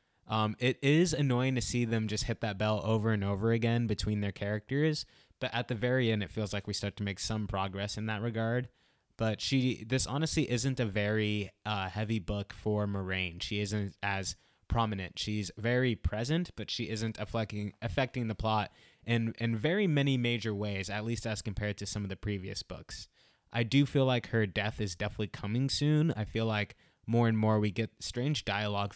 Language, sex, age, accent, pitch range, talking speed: English, male, 20-39, American, 100-120 Hz, 200 wpm